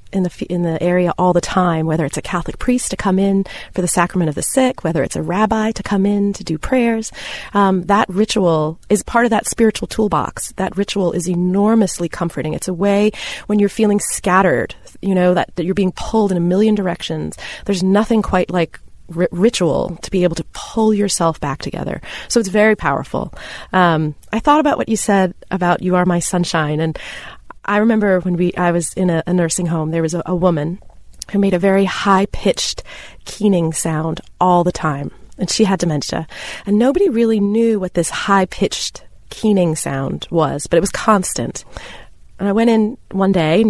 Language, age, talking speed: English, 30-49, 200 wpm